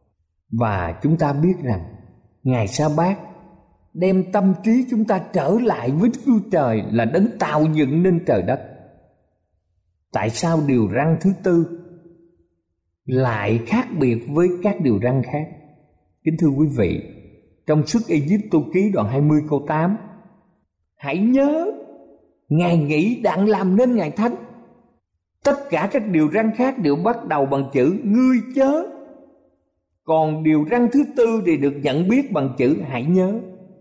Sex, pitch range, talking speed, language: male, 125-205 Hz, 155 wpm, Vietnamese